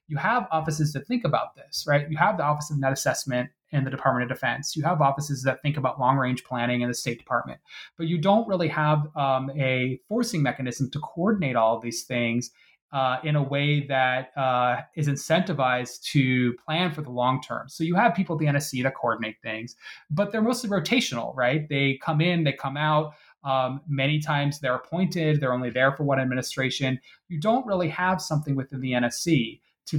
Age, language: 20-39, English